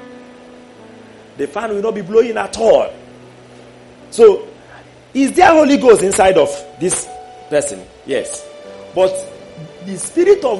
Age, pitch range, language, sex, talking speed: 40-59, 180-270 Hz, English, male, 125 wpm